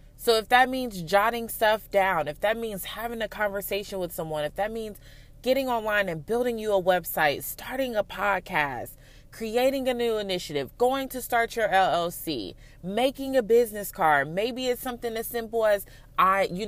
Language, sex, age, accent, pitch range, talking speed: English, female, 20-39, American, 170-240 Hz, 175 wpm